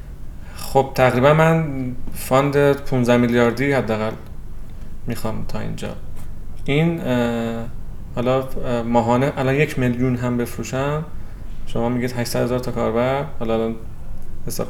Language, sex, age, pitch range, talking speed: Persian, male, 30-49, 110-130 Hz, 105 wpm